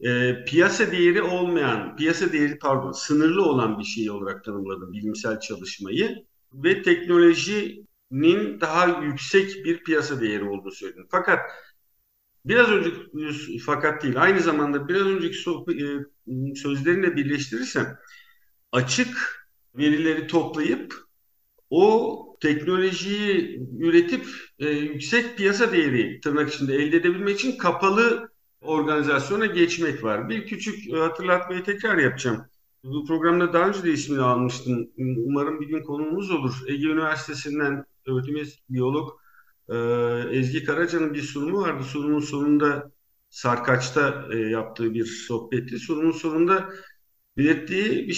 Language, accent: Turkish, native